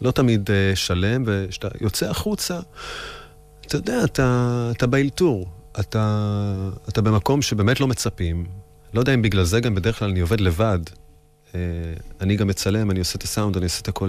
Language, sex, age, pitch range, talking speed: English, male, 30-49, 90-115 Hz, 170 wpm